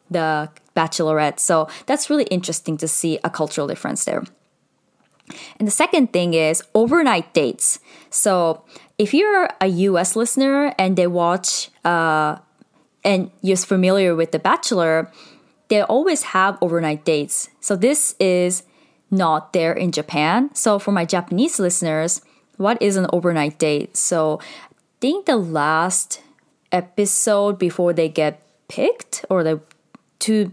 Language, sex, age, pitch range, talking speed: English, female, 20-39, 160-205 Hz, 140 wpm